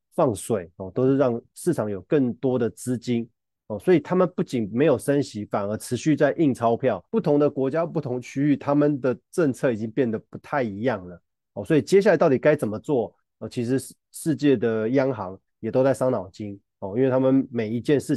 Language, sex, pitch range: Chinese, male, 110-140 Hz